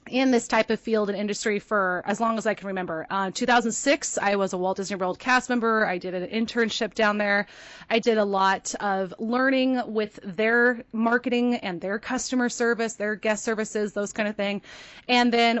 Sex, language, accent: female, English, American